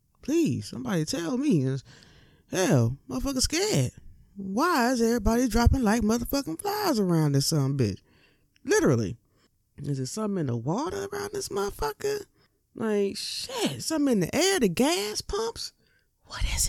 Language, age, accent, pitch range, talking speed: English, 20-39, American, 130-190 Hz, 140 wpm